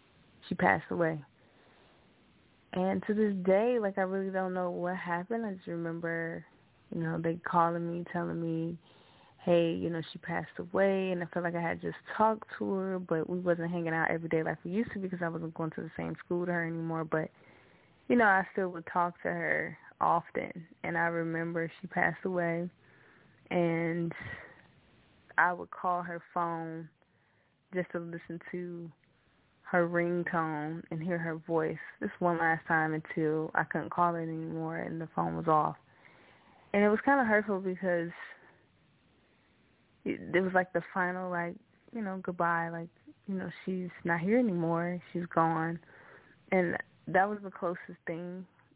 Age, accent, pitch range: 20-39, American, 165-185 Hz